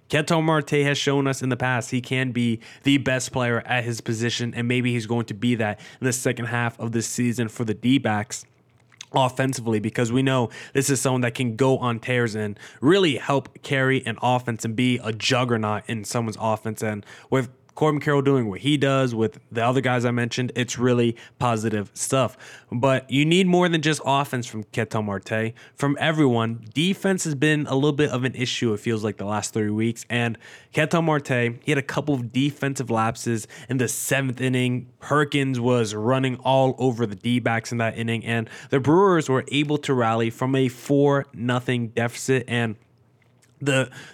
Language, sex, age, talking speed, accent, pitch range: English, male, 20-39, 195 wpm, American, 120-140 Hz